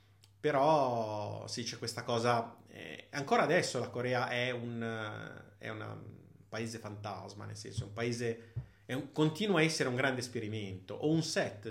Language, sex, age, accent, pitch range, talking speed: Italian, male, 30-49, native, 105-135 Hz, 170 wpm